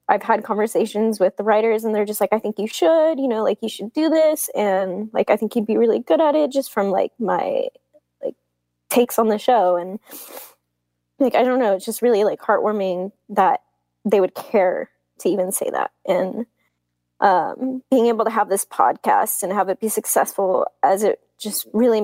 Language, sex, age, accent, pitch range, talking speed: English, female, 10-29, American, 190-300 Hz, 205 wpm